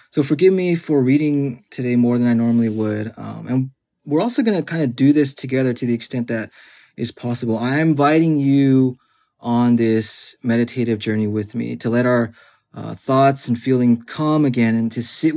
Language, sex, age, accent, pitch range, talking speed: English, male, 30-49, American, 115-135 Hz, 190 wpm